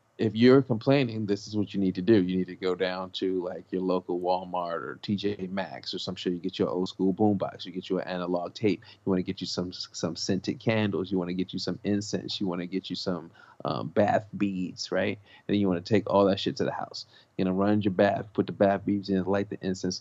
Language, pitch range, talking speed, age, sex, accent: English, 95-105 Hz, 265 wpm, 30-49, male, American